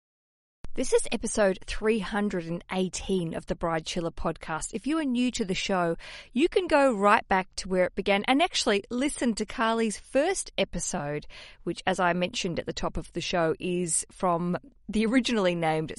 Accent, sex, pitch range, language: Australian, female, 175-250 Hz, English